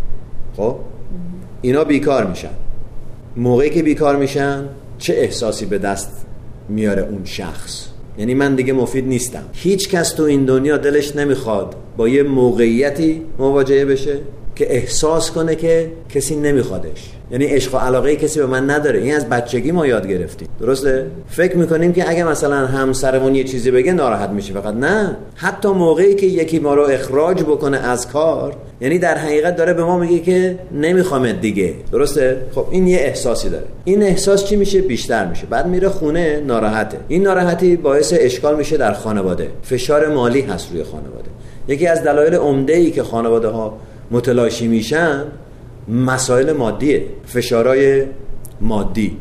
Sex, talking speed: male, 155 wpm